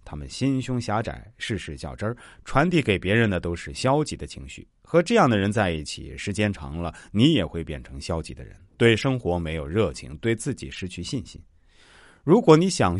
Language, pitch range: Chinese, 85-125 Hz